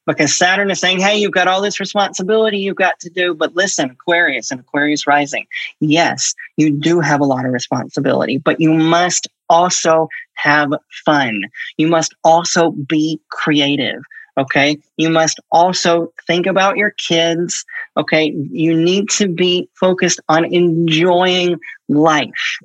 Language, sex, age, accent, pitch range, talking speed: English, male, 40-59, American, 155-190 Hz, 150 wpm